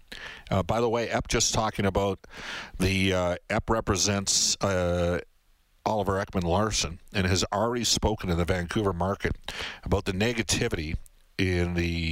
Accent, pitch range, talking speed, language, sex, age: American, 85-110 Hz, 145 wpm, English, male, 50-69